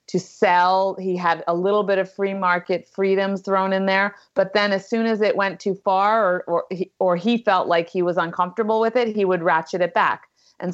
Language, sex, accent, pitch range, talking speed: English, female, American, 170-205 Hz, 220 wpm